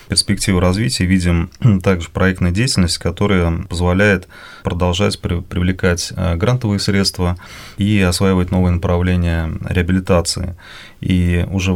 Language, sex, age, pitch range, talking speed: Russian, male, 30-49, 85-100 Hz, 95 wpm